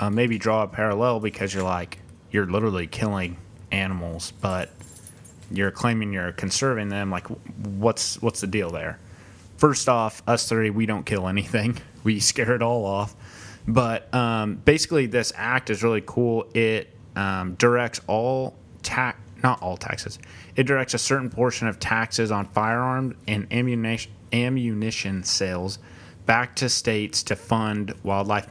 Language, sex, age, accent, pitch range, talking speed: English, male, 30-49, American, 100-120 Hz, 150 wpm